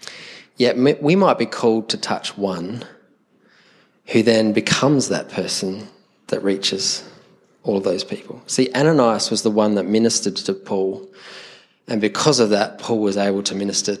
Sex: male